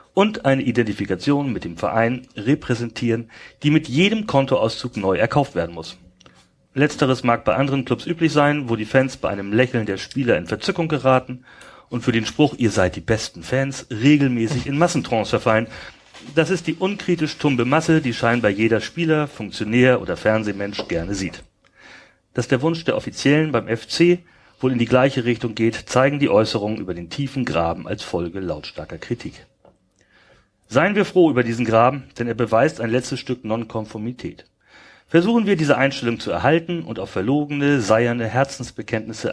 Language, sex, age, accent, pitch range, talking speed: German, male, 40-59, German, 110-145 Hz, 165 wpm